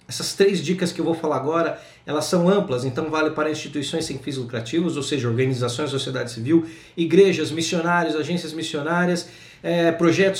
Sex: male